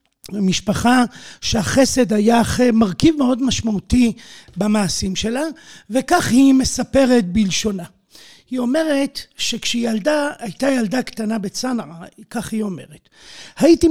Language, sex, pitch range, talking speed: Hebrew, male, 200-255 Hz, 110 wpm